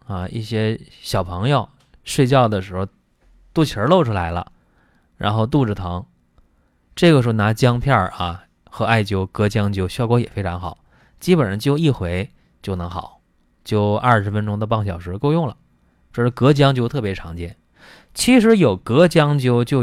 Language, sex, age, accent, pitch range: Chinese, male, 20-39, native, 90-130 Hz